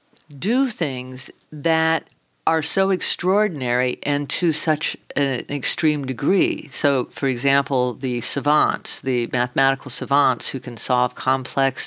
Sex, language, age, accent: female, English, 50-69, American